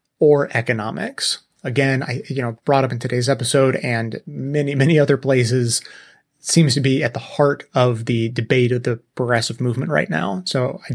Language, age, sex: English, 30-49, male